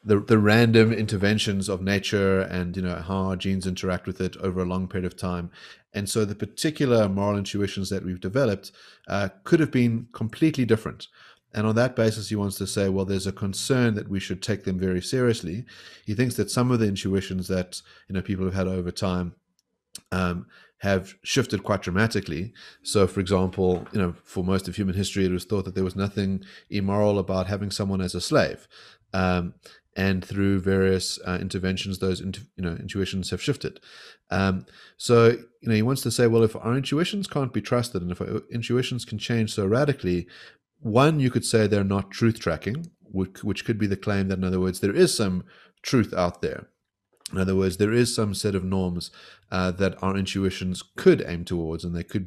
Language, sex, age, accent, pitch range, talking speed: English, male, 30-49, Australian, 95-110 Hz, 205 wpm